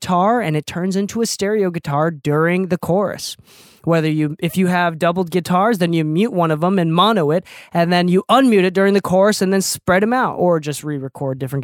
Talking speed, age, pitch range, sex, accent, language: 220 wpm, 20-39, 160-190 Hz, male, American, English